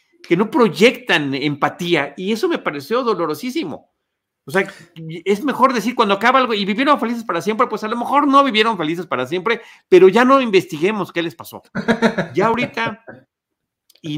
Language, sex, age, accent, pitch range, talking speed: Spanish, male, 50-69, Mexican, 145-210 Hz, 175 wpm